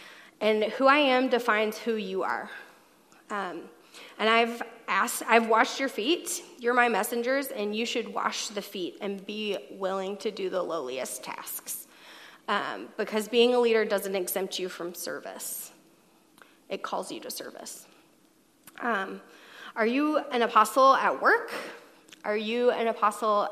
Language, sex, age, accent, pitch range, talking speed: English, female, 20-39, American, 210-260 Hz, 150 wpm